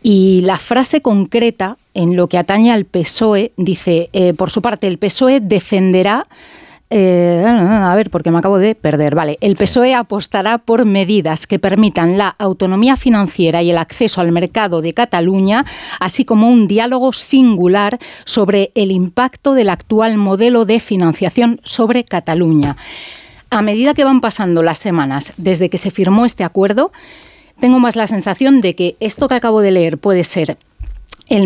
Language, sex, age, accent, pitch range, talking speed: Spanish, female, 40-59, Spanish, 180-240 Hz, 165 wpm